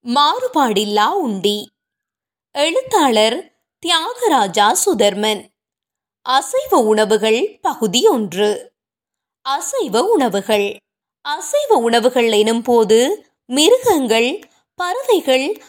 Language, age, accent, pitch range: Tamil, 20-39, native, 225-360 Hz